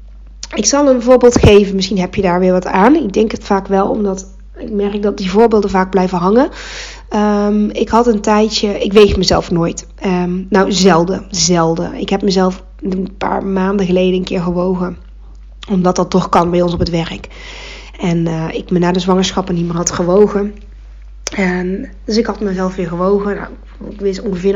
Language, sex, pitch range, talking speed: Dutch, female, 180-220 Hz, 195 wpm